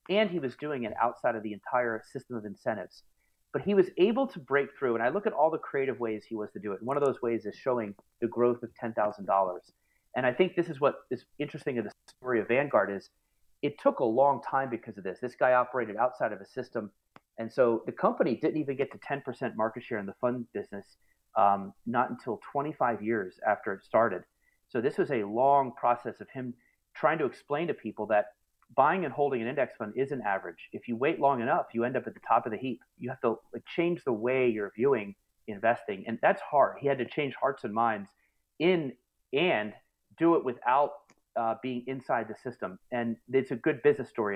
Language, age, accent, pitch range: English, 30-49, American, 110-140 Hz